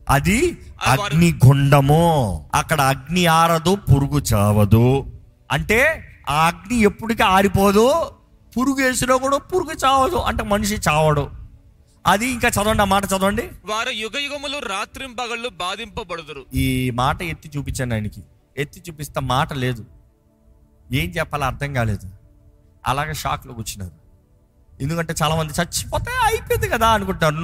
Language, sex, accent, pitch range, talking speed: Telugu, male, native, 130-215 Hz, 110 wpm